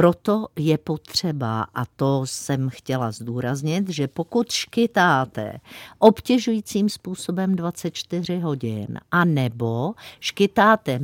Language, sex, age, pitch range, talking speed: Czech, female, 50-69, 130-180 Hz, 100 wpm